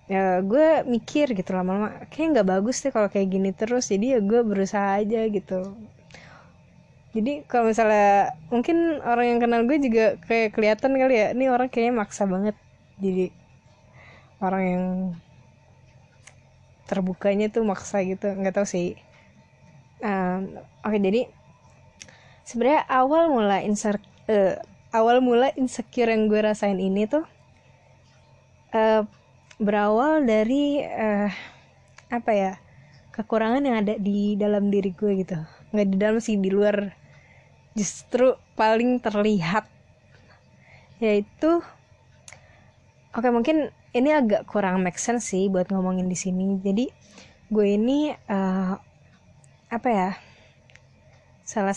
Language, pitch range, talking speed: Indonesian, 185-235 Hz, 125 wpm